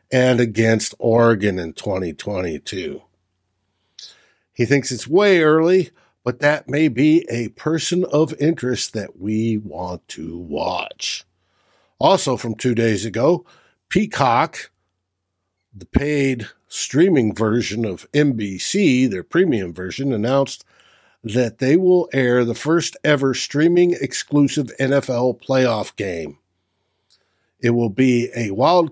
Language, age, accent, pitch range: English, 60-79, American, 105-150 Hz